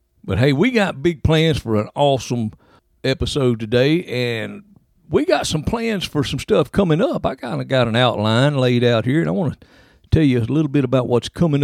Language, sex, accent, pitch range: English, male, American, 115-160 Hz